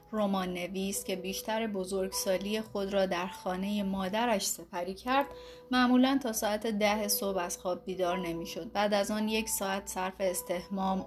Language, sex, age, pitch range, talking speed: Persian, female, 30-49, 185-230 Hz, 150 wpm